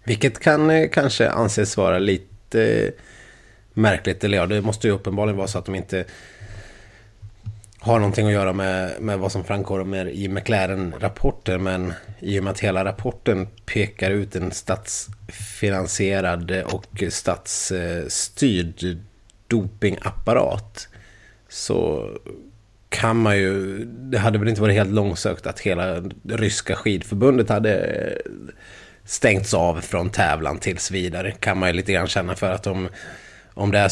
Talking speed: 145 wpm